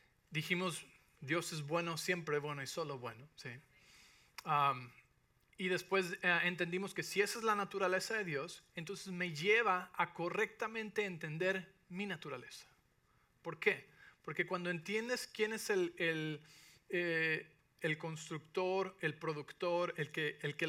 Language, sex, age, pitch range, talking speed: English, male, 40-59, 145-180 Hz, 140 wpm